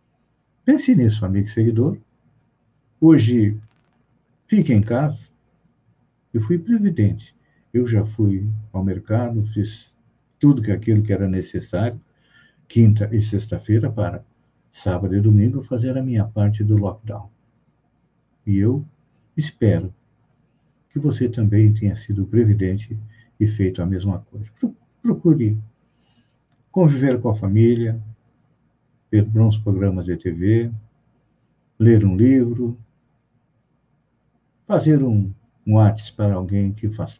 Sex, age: male, 60-79